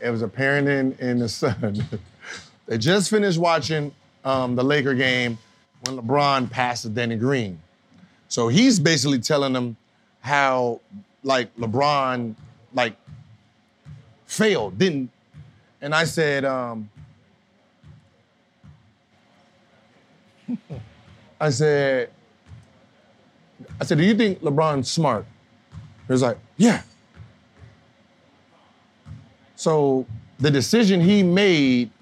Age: 30-49